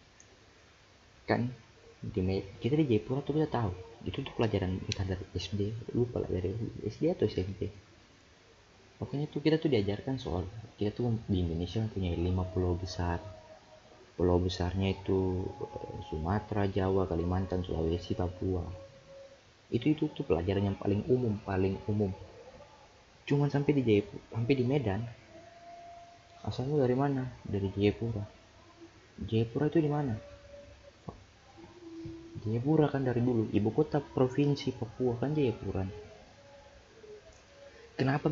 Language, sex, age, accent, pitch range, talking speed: Indonesian, male, 30-49, native, 95-130 Hz, 120 wpm